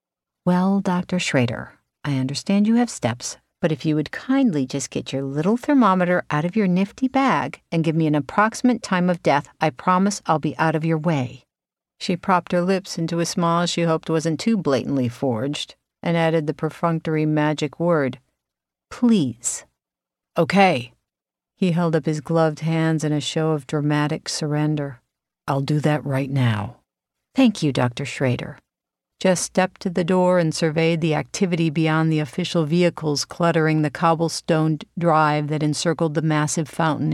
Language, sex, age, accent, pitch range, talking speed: English, female, 50-69, American, 150-180 Hz, 165 wpm